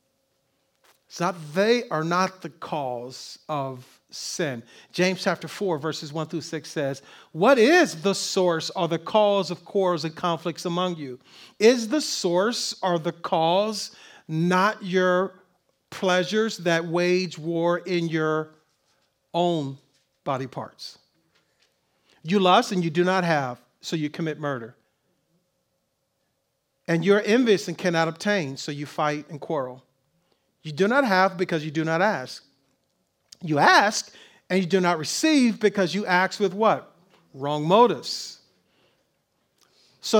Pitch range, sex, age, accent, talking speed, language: 155-190 Hz, male, 50-69, American, 135 wpm, English